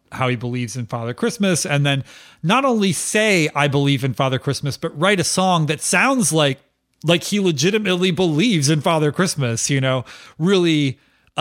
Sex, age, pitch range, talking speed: male, 30-49, 130-170 Hz, 180 wpm